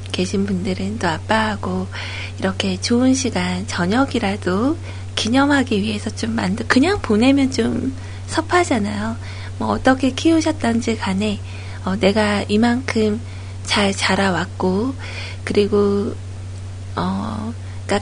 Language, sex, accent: Korean, female, native